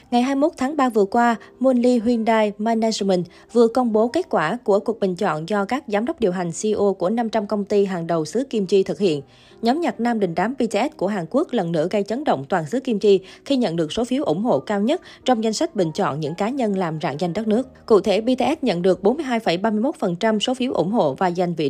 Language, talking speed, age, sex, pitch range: Vietnamese, 245 wpm, 20-39, female, 190-245 Hz